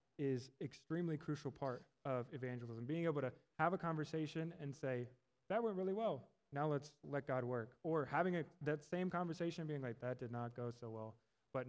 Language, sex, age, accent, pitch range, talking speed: English, male, 20-39, American, 125-155 Hz, 195 wpm